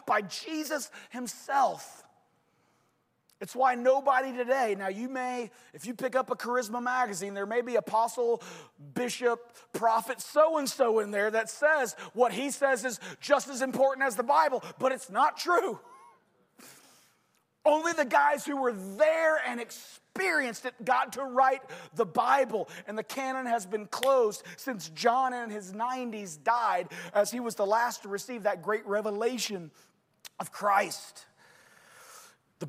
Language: English